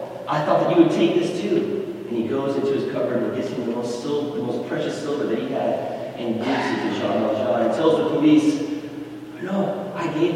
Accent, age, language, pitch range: American, 40-59, English, 150-220 Hz